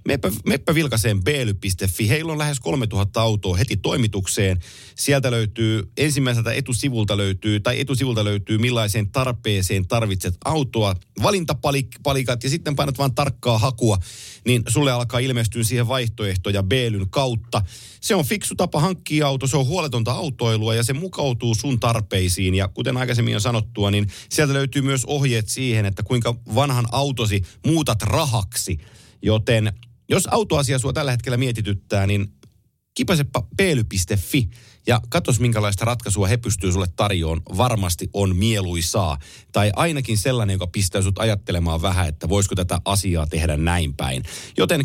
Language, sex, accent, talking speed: Finnish, male, native, 140 wpm